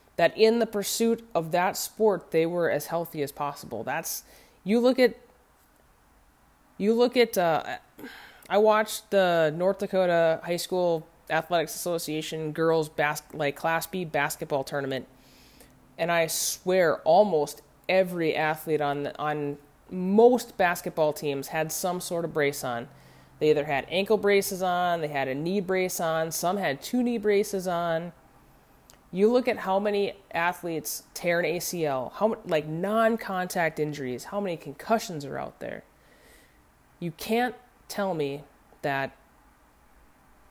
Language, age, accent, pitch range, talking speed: English, 20-39, American, 150-195 Hz, 145 wpm